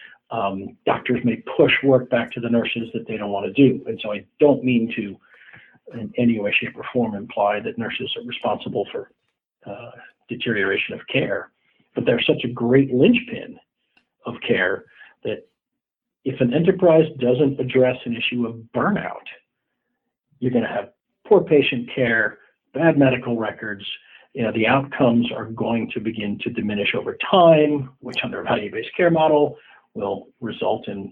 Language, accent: English, American